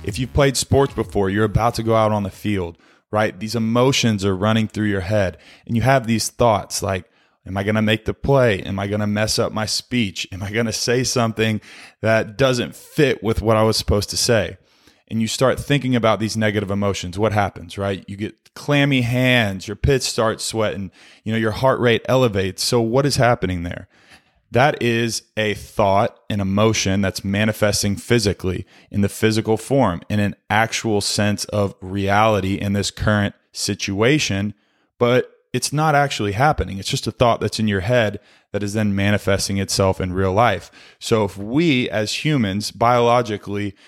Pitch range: 100-120 Hz